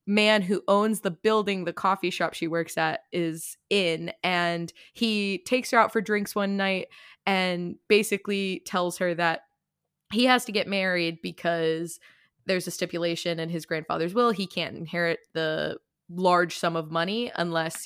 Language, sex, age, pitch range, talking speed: English, female, 20-39, 170-215 Hz, 165 wpm